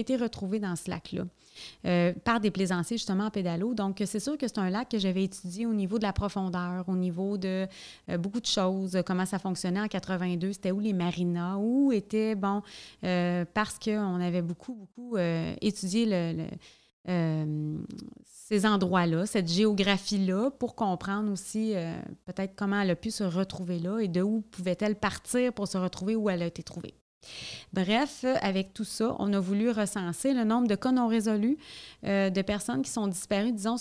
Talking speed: 190 wpm